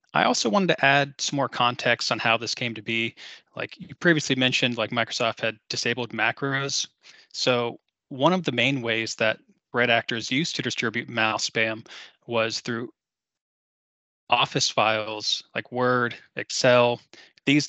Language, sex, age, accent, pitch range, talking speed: English, male, 20-39, American, 115-130 Hz, 155 wpm